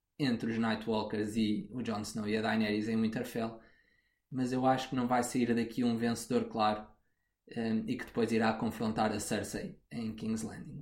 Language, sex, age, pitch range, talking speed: Portuguese, male, 20-39, 110-120 Hz, 185 wpm